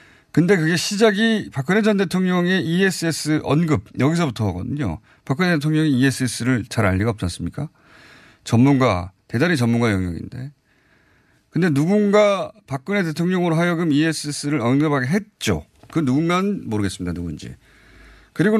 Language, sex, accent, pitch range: Korean, male, native, 105-165 Hz